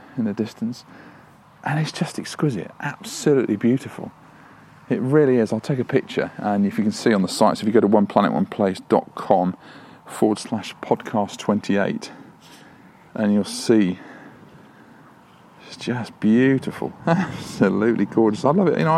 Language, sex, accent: English, male, British